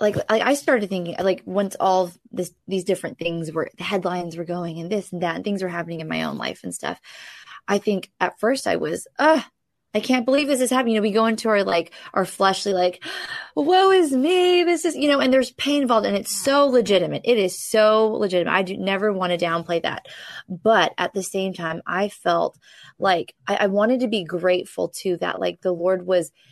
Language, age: English, 20-39